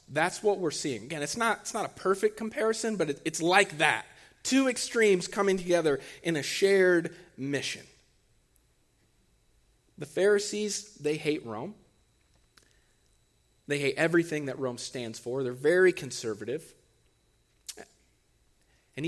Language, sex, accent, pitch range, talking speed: English, male, American, 155-200 Hz, 130 wpm